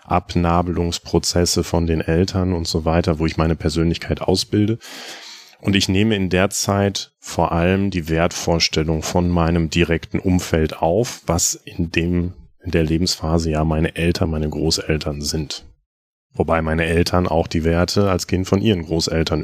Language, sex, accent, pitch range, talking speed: German, male, German, 80-95 Hz, 155 wpm